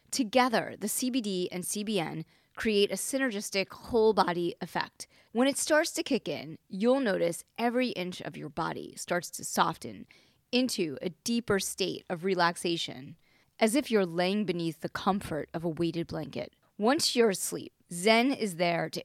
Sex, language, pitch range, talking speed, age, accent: female, English, 175-225 Hz, 160 wpm, 20-39, American